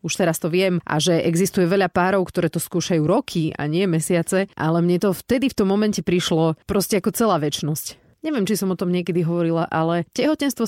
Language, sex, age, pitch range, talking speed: Slovak, female, 30-49, 160-195 Hz, 210 wpm